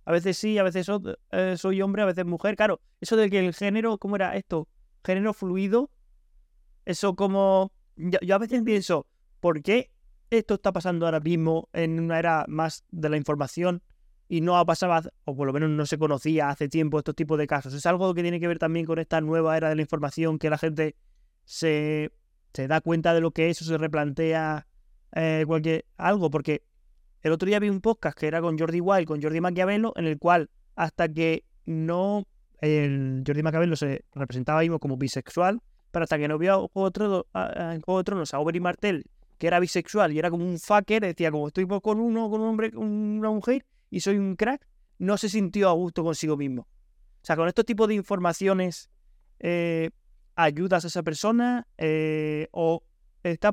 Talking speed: 205 wpm